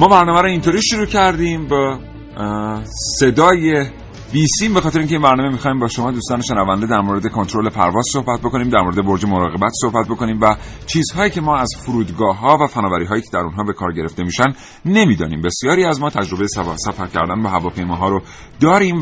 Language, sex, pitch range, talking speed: Persian, male, 95-140 Hz, 195 wpm